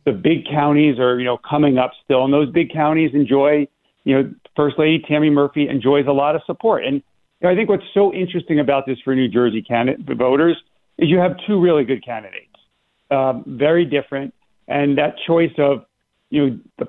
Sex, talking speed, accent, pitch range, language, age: male, 205 wpm, American, 130-150 Hz, English, 50-69